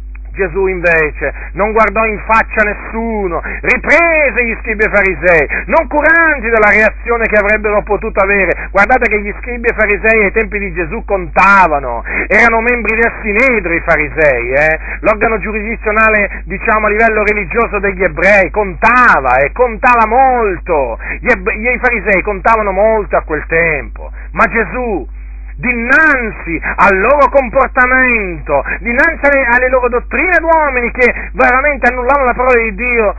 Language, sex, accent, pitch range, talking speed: Italian, male, native, 200-255 Hz, 140 wpm